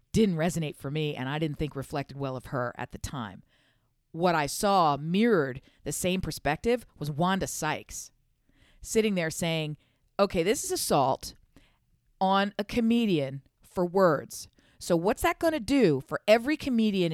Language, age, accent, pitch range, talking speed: English, 40-59, American, 150-200 Hz, 160 wpm